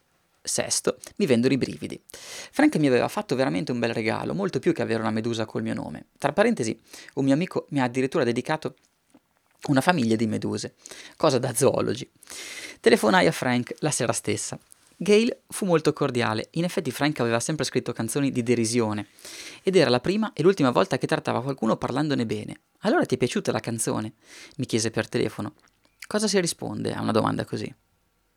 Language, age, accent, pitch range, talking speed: Italian, 20-39, native, 120-160 Hz, 180 wpm